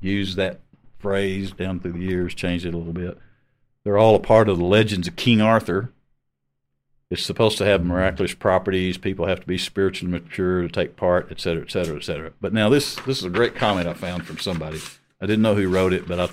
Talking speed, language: 230 wpm, English